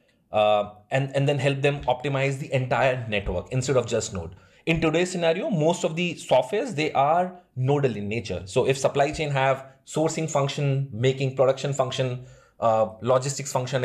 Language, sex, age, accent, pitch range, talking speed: English, male, 30-49, Indian, 110-145 Hz, 170 wpm